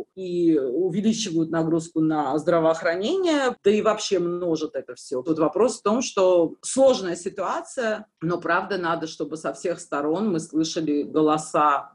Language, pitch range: Russian, 160-210 Hz